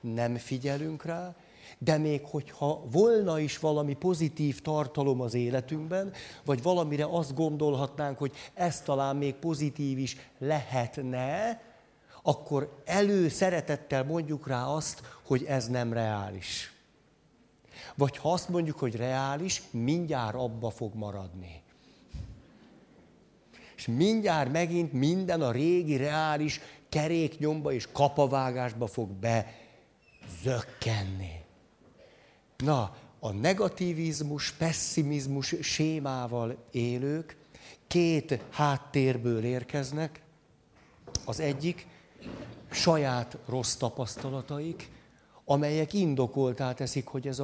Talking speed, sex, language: 95 wpm, male, Hungarian